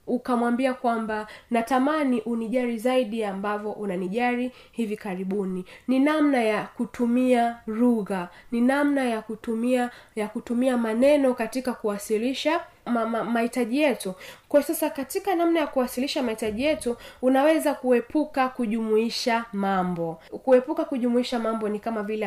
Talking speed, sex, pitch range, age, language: 120 wpm, female, 215-255 Hz, 20-39, Swahili